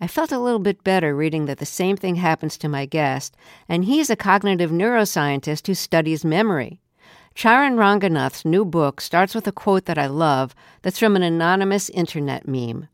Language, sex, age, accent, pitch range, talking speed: English, female, 50-69, American, 150-205 Hz, 185 wpm